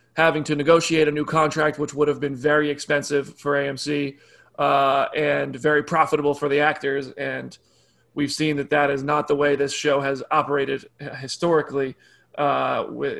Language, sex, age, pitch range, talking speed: English, male, 30-49, 145-170 Hz, 165 wpm